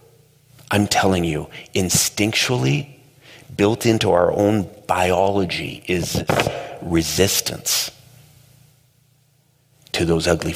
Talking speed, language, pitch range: 80 wpm, English, 95-135 Hz